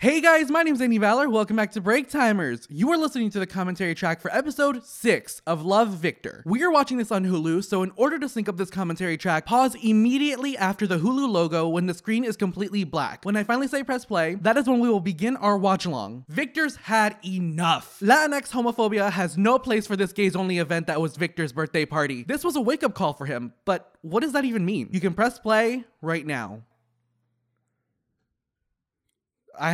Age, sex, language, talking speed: 20-39, male, English, 205 wpm